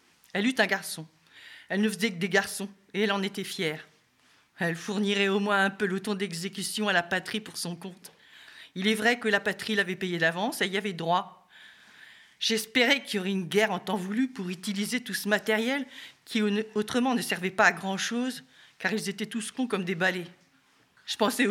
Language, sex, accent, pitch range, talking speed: French, female, French, 195-225 Hz, 210 wpm